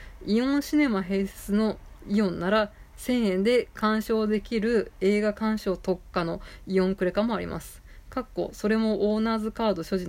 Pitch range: 190-230 Hz